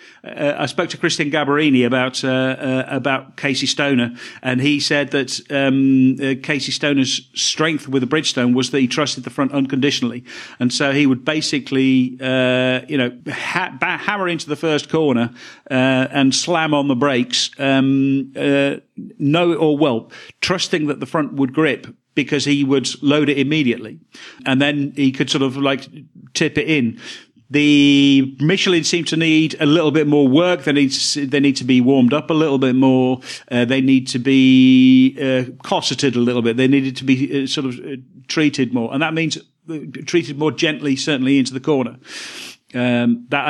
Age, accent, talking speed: 50-69, British, 185 wpm